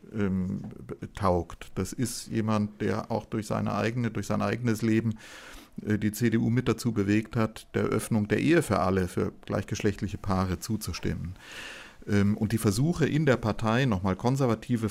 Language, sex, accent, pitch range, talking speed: German, male, German, 95-110 Hz, 150 wpm